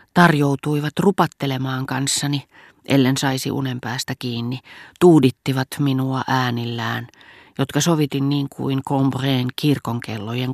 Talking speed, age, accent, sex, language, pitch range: 95 wpm, 40-59, native, female, Finnish, 120-145 Hz